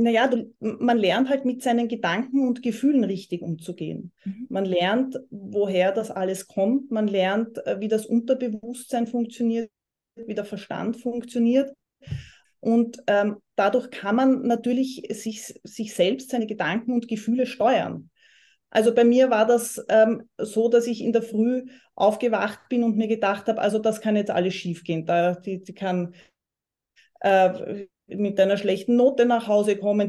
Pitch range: 205-240 Hz